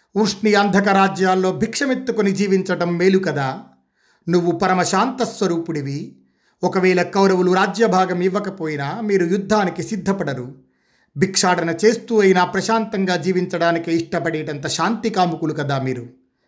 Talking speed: 95 wpm